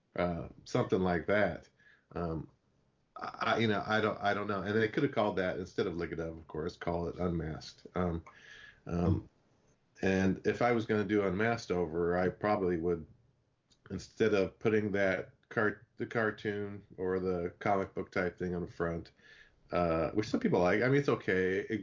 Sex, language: male, English